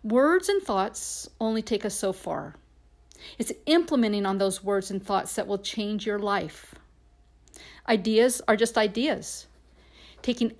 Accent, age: American, 50-69